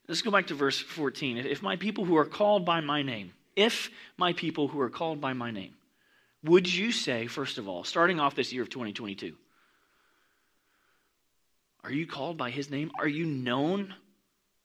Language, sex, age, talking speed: English, male, 30-49, 185 wpm